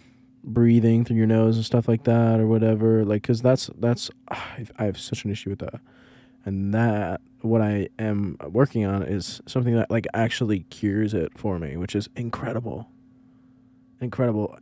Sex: male